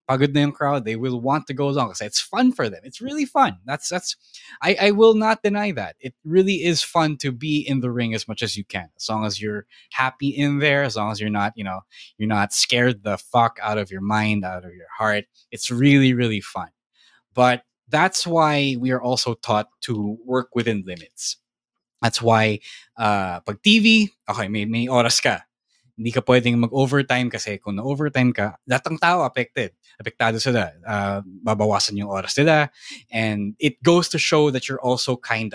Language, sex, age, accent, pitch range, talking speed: English, male, 20-39, Filipino, 105-145 Hz, 185 wpm